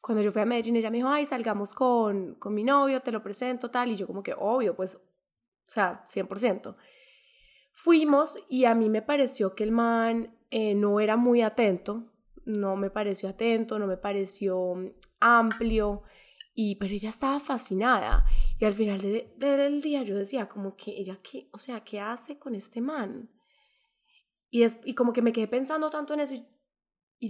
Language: Spanish